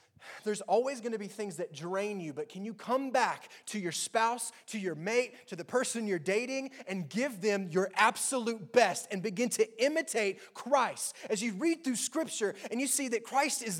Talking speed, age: 205 wpm, 20-39